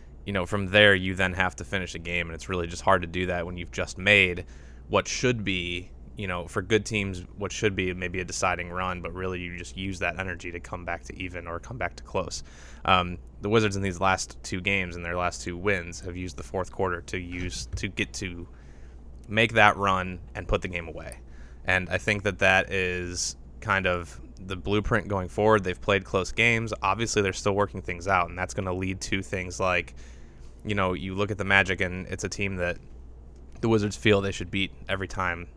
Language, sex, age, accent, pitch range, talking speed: English, male, 20-39, American, 85-100 Hz, 230 wpm